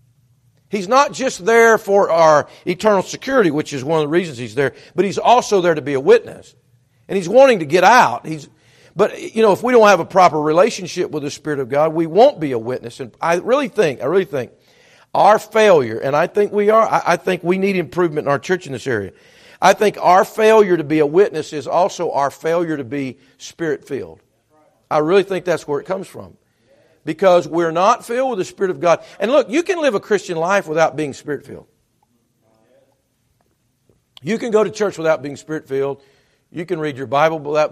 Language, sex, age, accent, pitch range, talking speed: English, male, 50-69, American, 130-195 Hz, 215 wpm